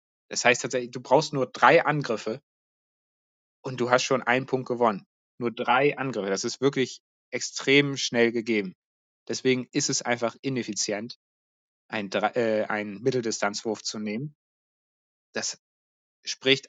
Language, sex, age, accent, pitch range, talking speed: German, male, 30-49, German, 110-135 Hz, 135 wpm